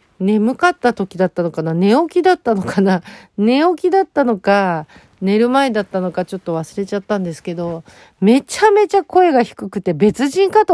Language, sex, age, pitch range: Japanese, female, 40-59, 175-230 Hz